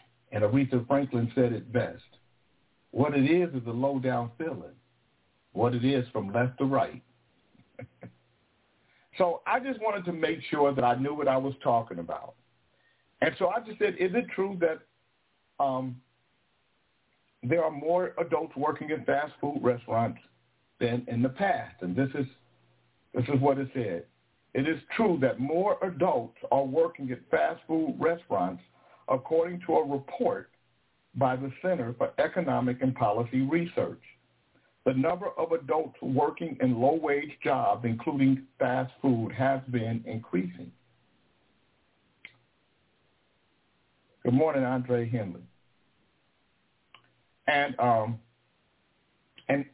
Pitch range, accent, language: 120-150 Hz, American, English